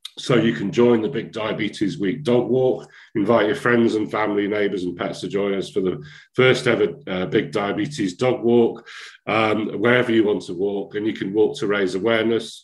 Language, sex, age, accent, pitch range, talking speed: English, male, 40-59, British, 95-120 Hz, 205 wpm